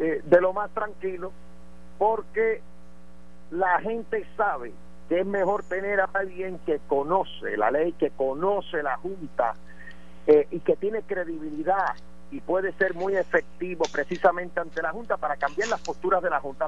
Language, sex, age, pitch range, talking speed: Spanish, male, 50-69, 165-220 Hz, 160 wpm